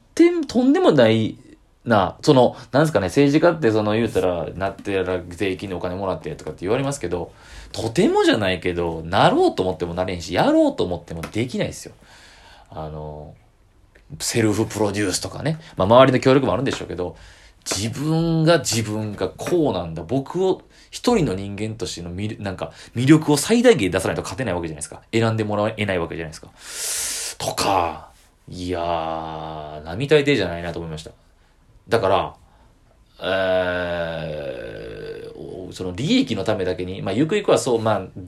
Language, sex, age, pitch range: Japanese, male, 30-49, 90-140 Hz